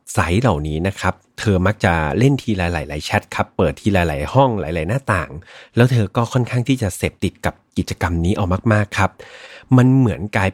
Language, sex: Thai, male